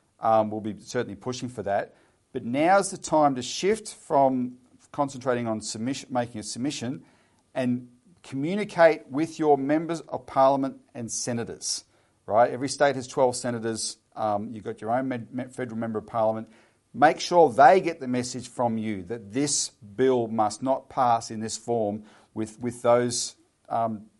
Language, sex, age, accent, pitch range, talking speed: English, male, 50-69, Australian, 110-155 Hz, 175 wpm